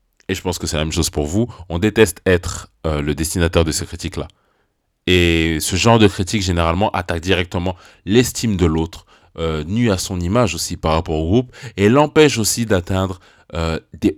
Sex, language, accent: male, French, French